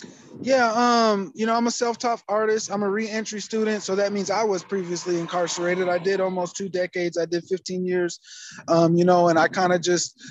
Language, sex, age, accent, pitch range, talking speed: English, male, 20-39, American, 160-185 Hz, 210 wpm